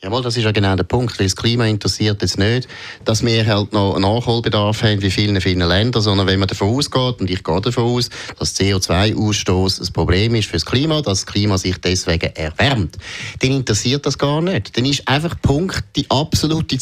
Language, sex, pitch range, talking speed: German, male, 100-130 Hz, 210 wpm